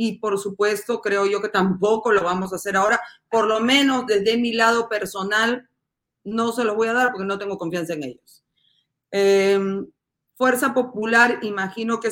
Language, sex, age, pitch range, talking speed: Spanish, female, 30-49, 195-235 Hz, 180 wpm